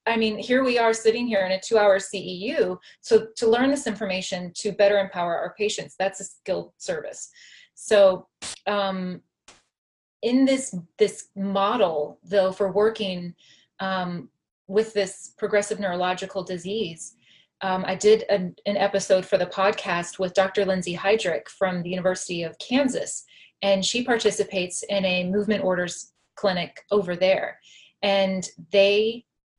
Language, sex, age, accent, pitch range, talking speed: English, female, 30-49, American, 190-220 Hz, 145 wpm